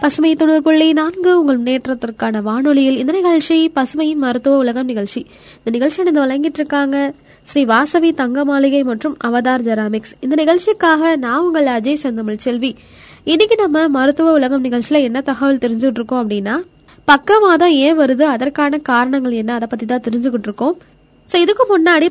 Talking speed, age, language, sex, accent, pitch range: 135 wpm, 20-39, Tamil, female, native, 245-315 Hz